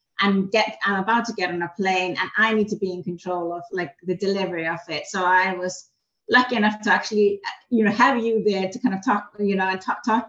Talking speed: 250 wpm